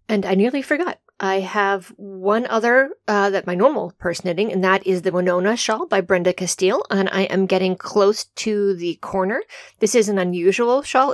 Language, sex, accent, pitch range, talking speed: English, female, American, 185-210 Hz, 195 wpm